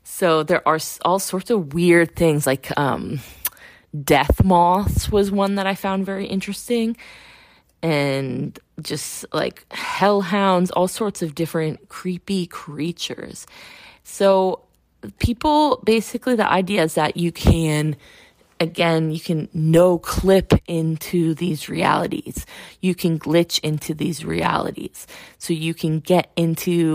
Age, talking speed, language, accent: 20-39, 125 wpm, English, American